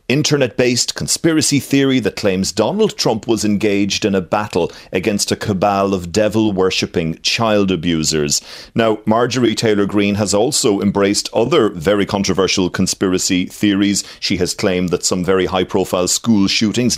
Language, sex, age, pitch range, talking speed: English, male, 40-59, 95-120 Hz, 140 wpm